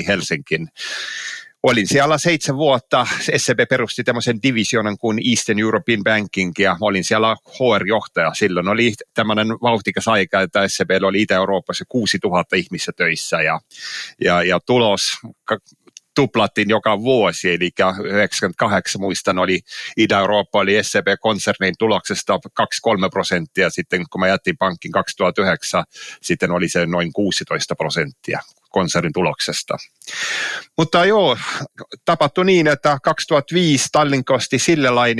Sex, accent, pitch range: male, native, 105-125 Hz